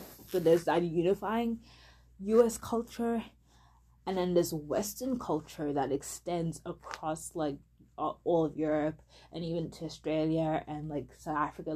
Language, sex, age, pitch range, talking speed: English, female, 20-39, 145-175 Hz, 140 wpm